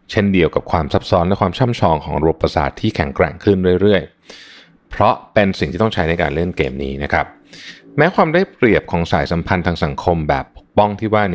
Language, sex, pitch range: Thai, male, 80-105 Hz